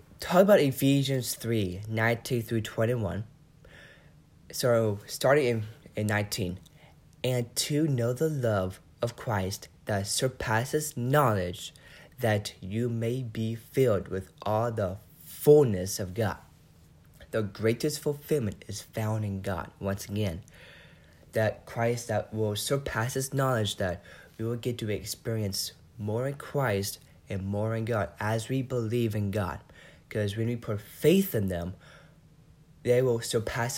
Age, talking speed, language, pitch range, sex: 20-39, 135 wpm, English, 100-125 Hz, male